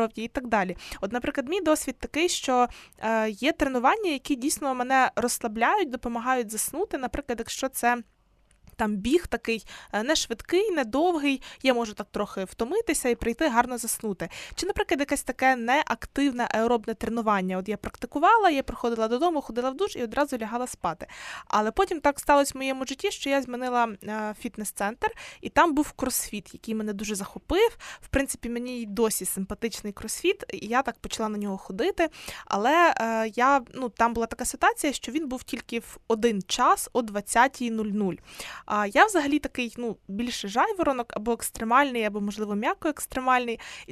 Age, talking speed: 20-39, 160 wpm